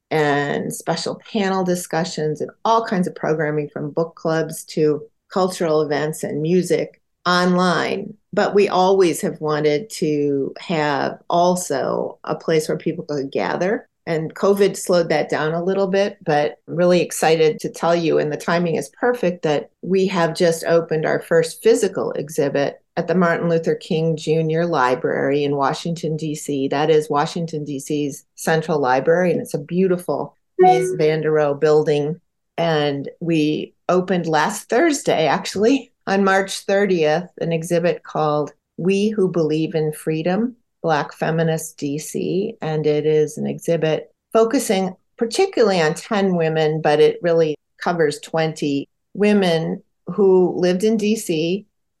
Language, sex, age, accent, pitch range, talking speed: English, female, 40-59, American, 155-190 Hz, 145 wpm